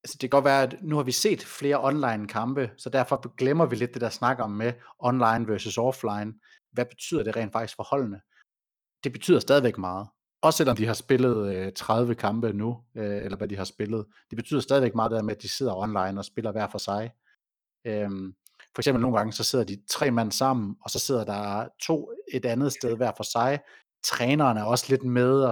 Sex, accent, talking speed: male, native, 215 wpm